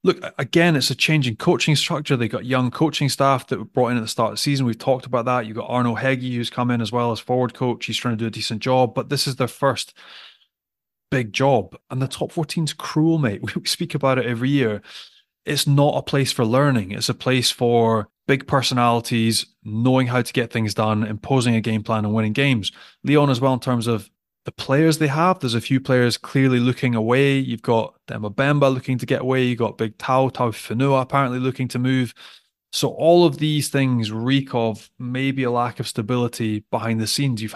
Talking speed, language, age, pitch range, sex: 220 wpm, English, 20-39, 115-140 Hz, male